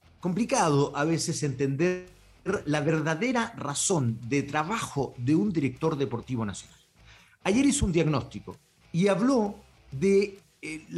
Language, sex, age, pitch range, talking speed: Spanish, male, 50-69, 120-180 Hz, 120 wpm